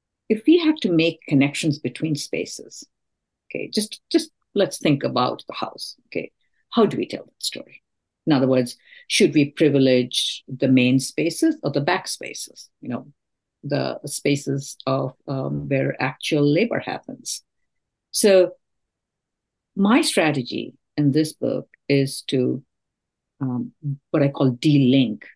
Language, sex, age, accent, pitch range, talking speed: English, female, 50-69, Indian, 130-160 Hz, 140 wpm